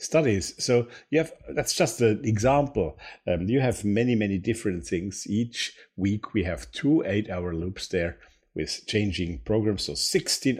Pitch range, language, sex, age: 85-115 Hz, English, male, 50-69